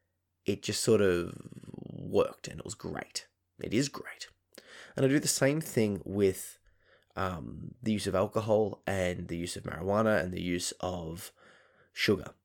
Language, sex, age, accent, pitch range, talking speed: English, male, 20-39, Australian, 90-110 Hz, 165 wpm